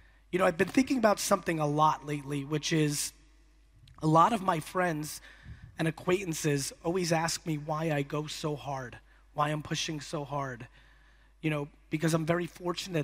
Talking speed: 175 wpm